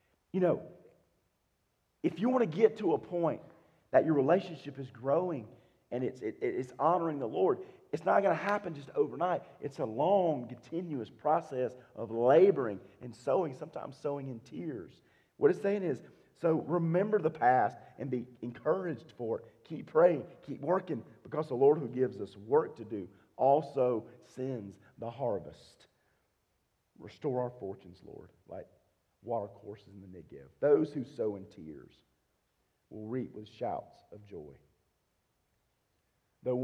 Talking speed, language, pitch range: 155 wpm, English, 125-190 Hz